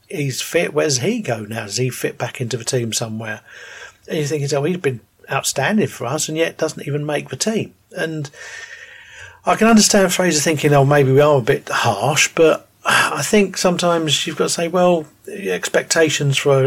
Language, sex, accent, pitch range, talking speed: English, male, British, 125-160 Hz, 200 wpm